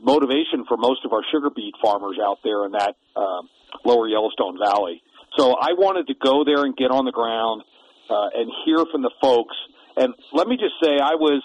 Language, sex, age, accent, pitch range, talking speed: English, male, 50-69, American, 130-160 Hz, 210 wpm